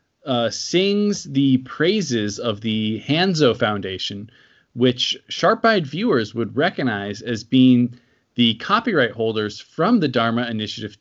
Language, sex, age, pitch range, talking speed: English, male, 20-39, 115-155 Hz, 120 wpm